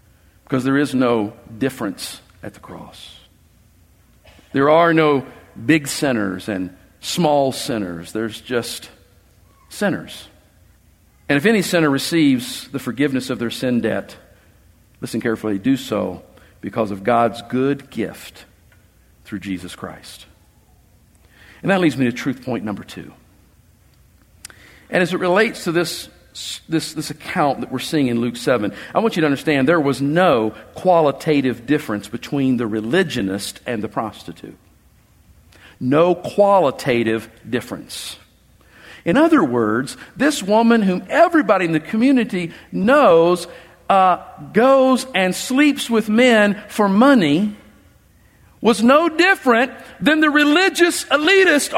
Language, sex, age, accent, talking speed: English, male, 50-69, American, 130 wpm